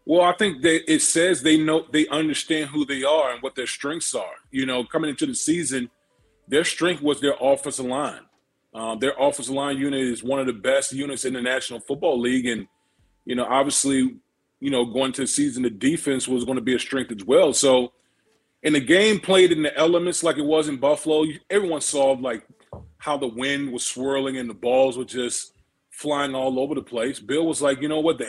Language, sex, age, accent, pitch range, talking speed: English, male, 30-49, American, 130-160 Hz, 220 wpm